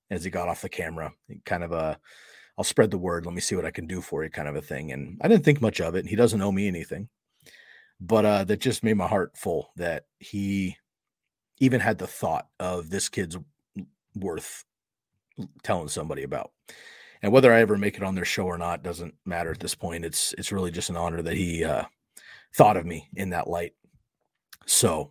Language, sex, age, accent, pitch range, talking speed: English, male, 30-49, American, 85-105 Hz, 220 wpm